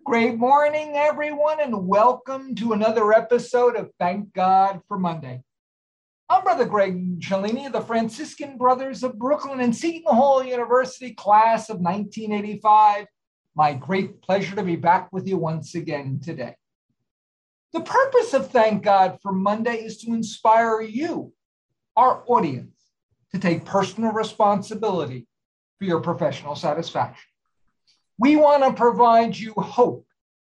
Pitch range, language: 160-240 Hz, English